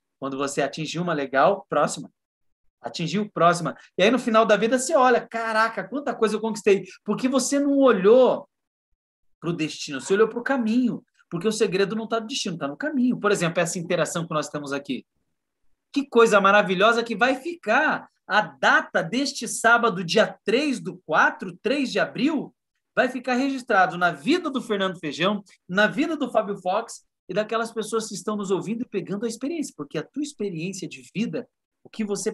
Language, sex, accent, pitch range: Portuguese, male, Brazilian, 160-230 Hz